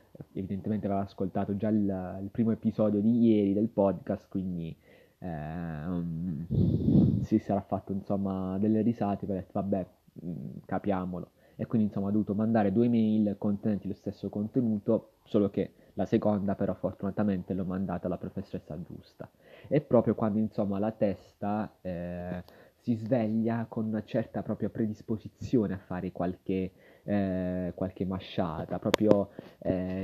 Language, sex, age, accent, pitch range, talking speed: Italian, male, 20-39, native, 95-110 Hz, 140 wpm